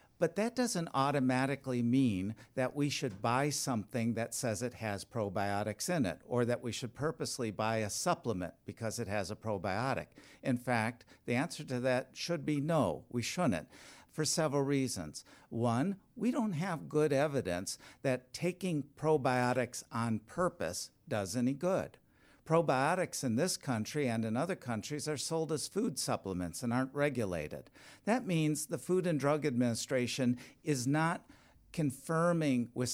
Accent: American